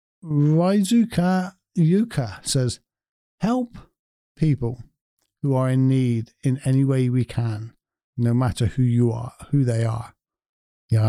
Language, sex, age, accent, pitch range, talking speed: English, male, 50-69, British, 110-145 Hz, 130 wpm